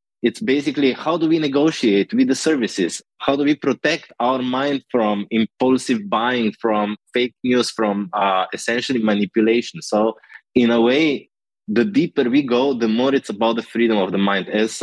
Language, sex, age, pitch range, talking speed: English, male, 20-39, 110-140 Hz, 175 wpm